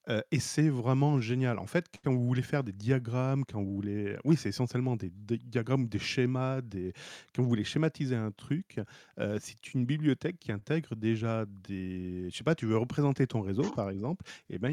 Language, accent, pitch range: French, French, 100-130 Hz